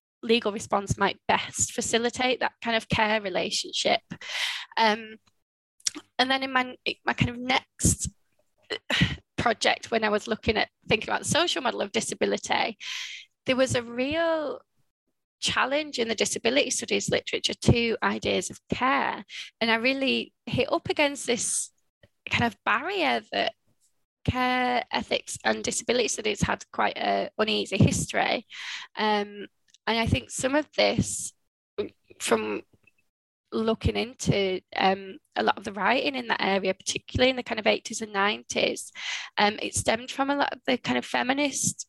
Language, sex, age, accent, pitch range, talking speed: English, female, 20-39, British, 210-265 Hz, 150 wpm